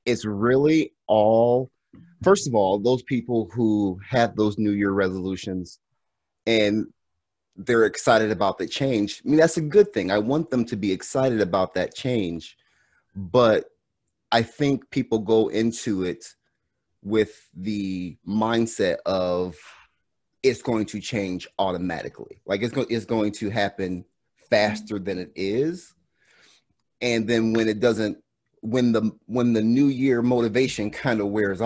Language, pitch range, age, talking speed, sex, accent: English, 100-120 Hz, 30-49, 140 wpm, male, American